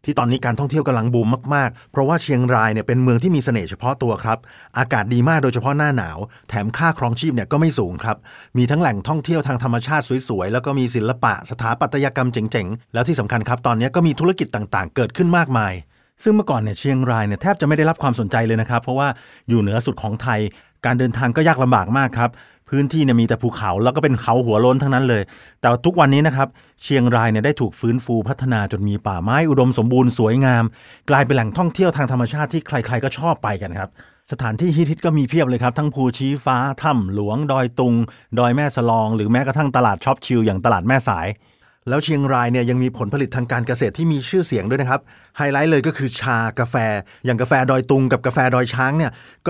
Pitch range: 115-145 Hz